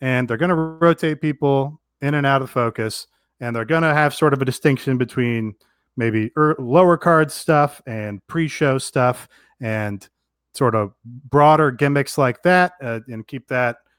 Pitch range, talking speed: 120-150 Hz, 165 wpm